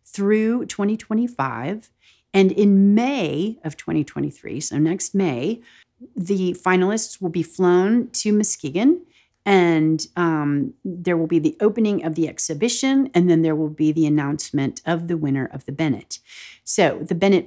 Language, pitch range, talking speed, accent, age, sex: English, 155-205 Hz, 150 wpm, American, 40-59, female